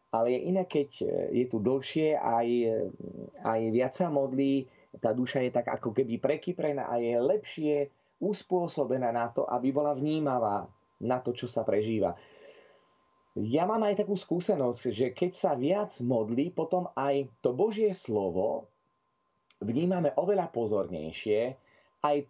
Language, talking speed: Slovak, 140 wpm